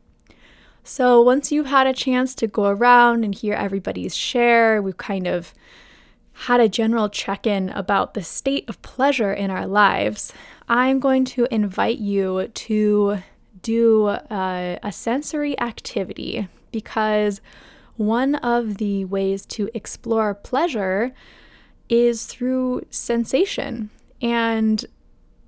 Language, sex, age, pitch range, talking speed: English, female, 10-29, 205-240 Hz, 120 wpm